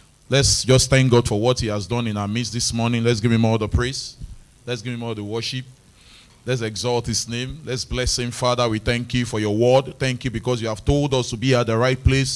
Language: English